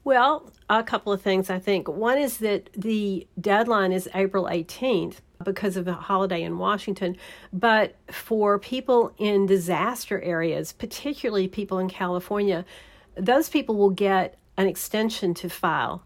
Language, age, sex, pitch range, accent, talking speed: English, 50-69, female, 185-230 Hz, American, 145 wpm